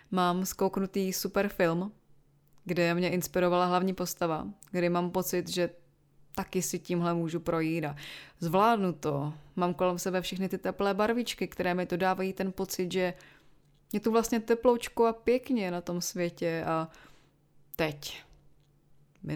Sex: female